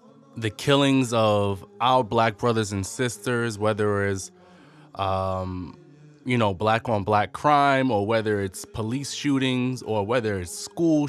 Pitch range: 105-135 Hz